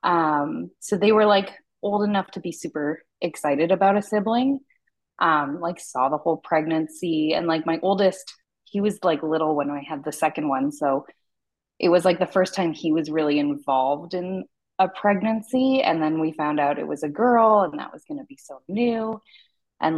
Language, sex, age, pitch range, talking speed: English, female, 20-39, 155-200 Hz, 200 wpm